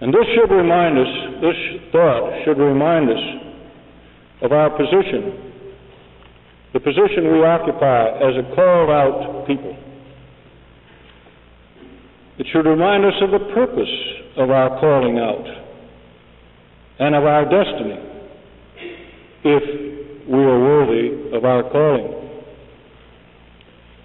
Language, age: English, 60-79